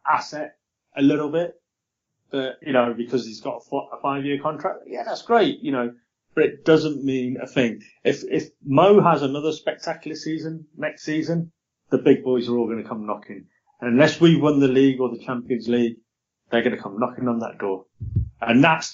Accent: British